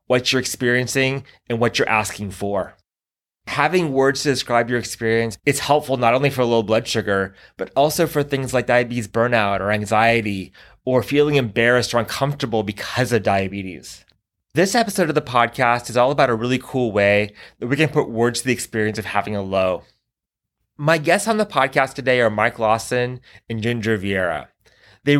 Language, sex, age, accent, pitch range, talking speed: English, male, 20-39, American, 110-140 Hz, 180 wpm